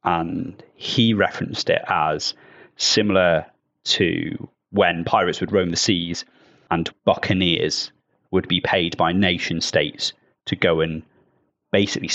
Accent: British